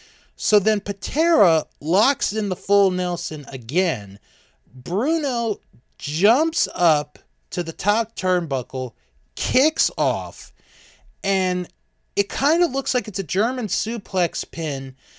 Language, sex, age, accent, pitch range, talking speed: English, male, 30-49, American, 130-205 Hz, 115 wpm